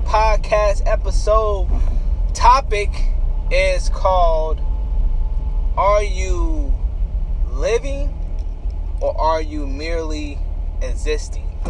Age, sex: 20-39, male